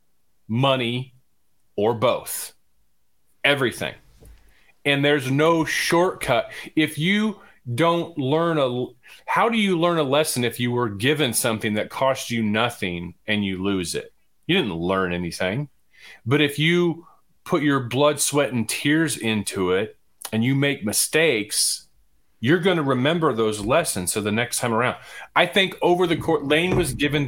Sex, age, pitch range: male, 40-59, 100-145 Hz